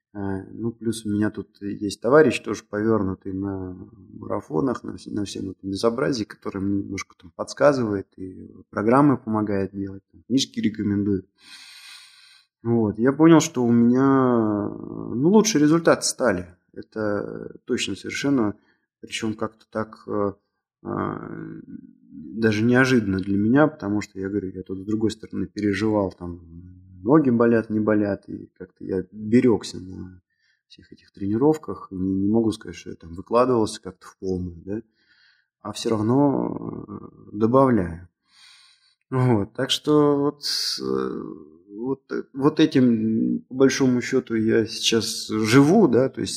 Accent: native